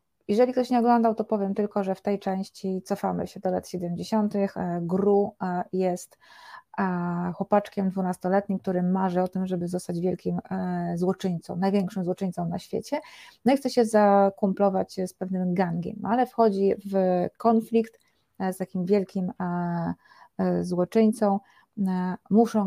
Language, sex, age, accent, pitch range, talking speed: Polish, female, 30-49, native, 180-210 Hz, 130 wpm